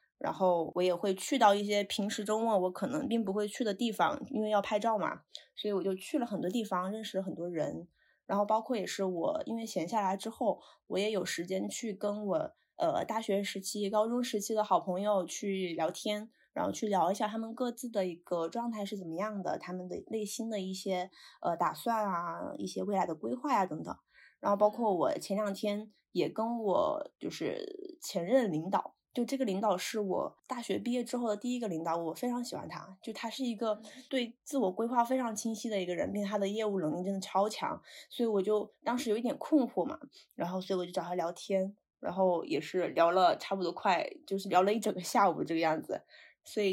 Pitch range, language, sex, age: 185-235 Hz, Chinese, female, 20-39